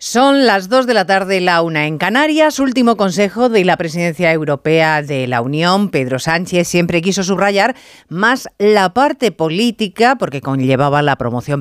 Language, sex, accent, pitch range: Spanish, female, Spanish, 155-230 Hz